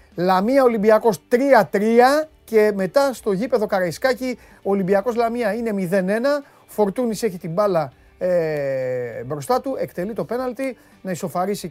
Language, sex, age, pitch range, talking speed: Greek, male, 30-49, 150-225 Hz, 125 wpm